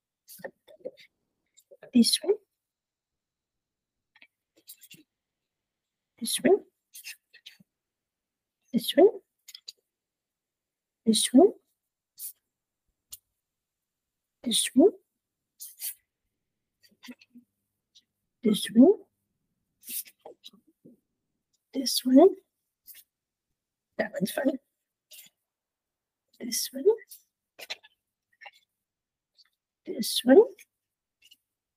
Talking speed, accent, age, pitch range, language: 40 wpm, American, 60-79, 205-285 Hz, English